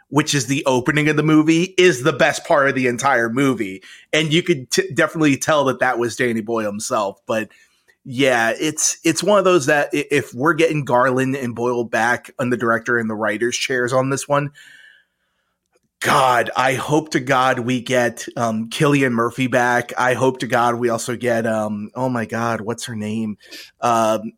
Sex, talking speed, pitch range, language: male, 190 wpm, 120-155 Hz, English